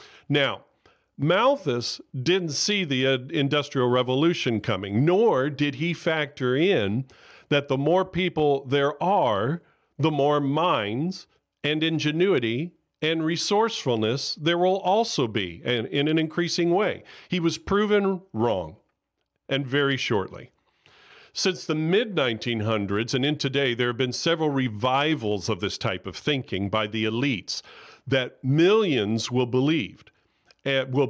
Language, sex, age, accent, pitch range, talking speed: English, male, 50-69, American, 115-160 Hz, 130 wpm